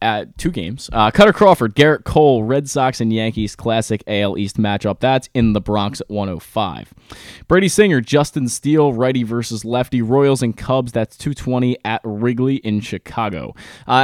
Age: 20-39